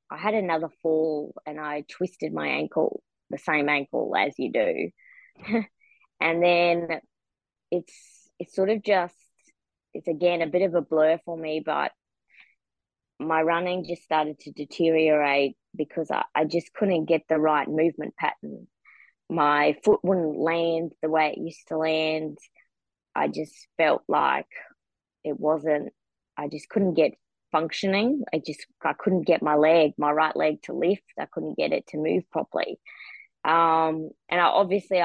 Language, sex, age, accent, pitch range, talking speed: English, female, 20-39, Australian, 155-185 Hz, 155 wpm